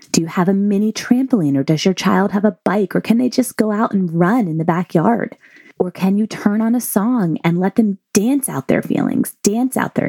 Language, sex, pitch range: English, female, 185-235 Hz